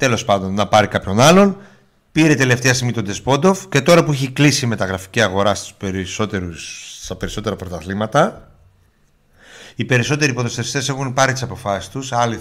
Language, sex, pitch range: Greek, male, 100-150 Hz